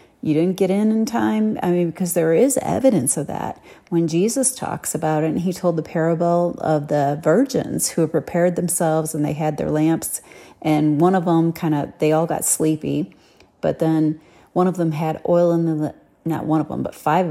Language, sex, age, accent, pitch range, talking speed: English, female, 40-59, American, 155-180 Hz, 210 wpm